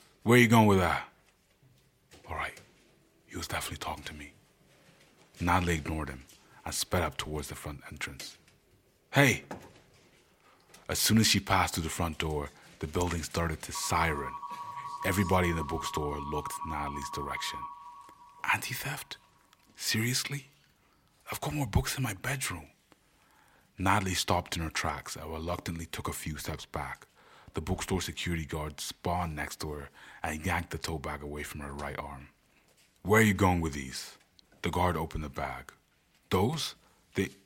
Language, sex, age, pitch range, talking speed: English, male, 30-49, 75-100 Hz, 155 wpm